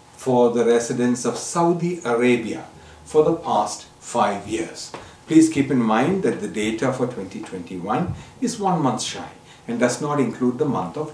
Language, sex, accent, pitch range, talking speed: English, male, Indian, 115-155 Hz, 165 wpm